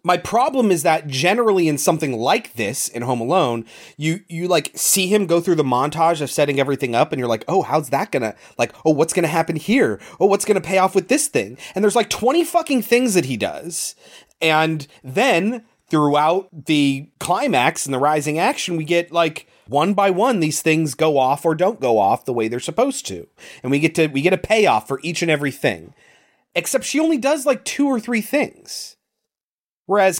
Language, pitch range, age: English, 160-235 Hz, 30-49